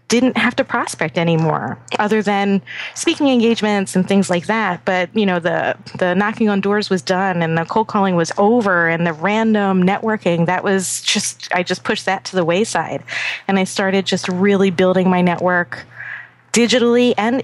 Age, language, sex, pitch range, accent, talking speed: 30-49, English, female, 185-220 Hz, American, 180 wpm